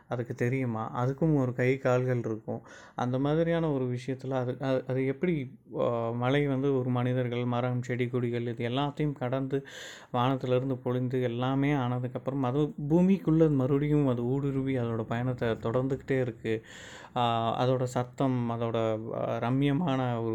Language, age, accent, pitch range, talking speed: Tamil, 20-39, native, 110-130 Hz, 120 wpm